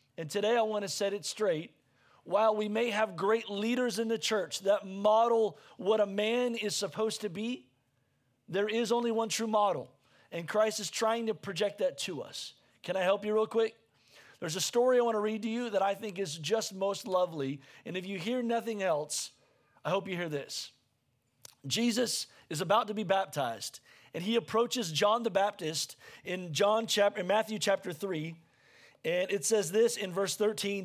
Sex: male